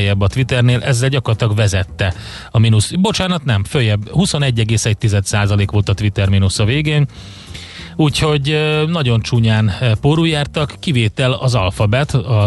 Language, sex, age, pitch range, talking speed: Hungarian, male, 30-49, 110-130 Hz, 120 wpm